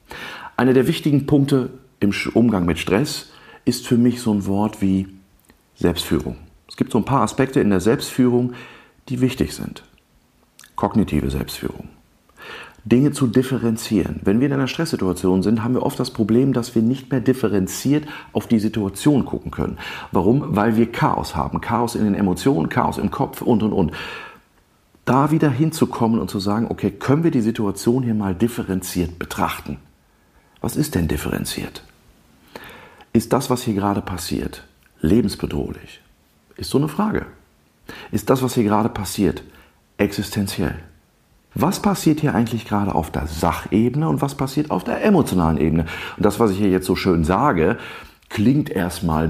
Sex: male